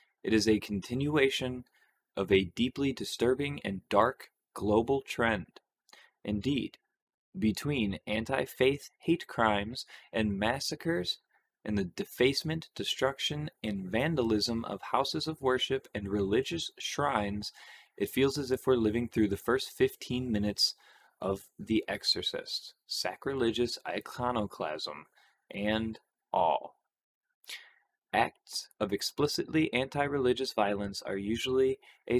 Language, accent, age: English, American, 20-39